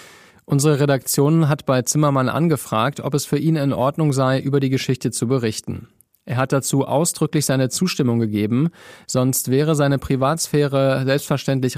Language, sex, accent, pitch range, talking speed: German, male, German, 120-150 Hz, 155 wpm